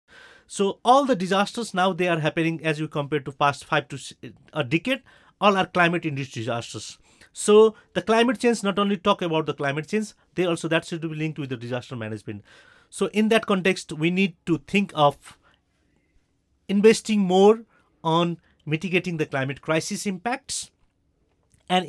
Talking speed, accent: 165 wpm, Indian